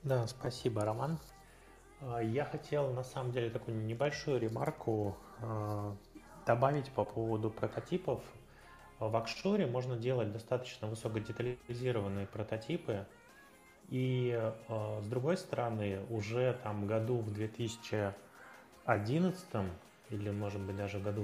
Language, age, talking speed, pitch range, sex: Russian, 20-39, 105 wpm, 105-125 Hz, male